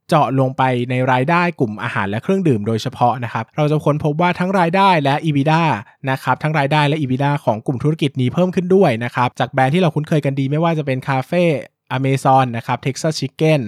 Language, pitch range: Thai, 120-155 Hz